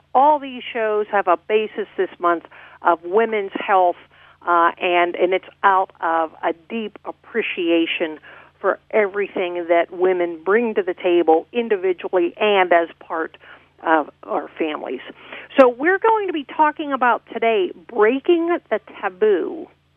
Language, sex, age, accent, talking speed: English, female, 50-69, American, 140 wpm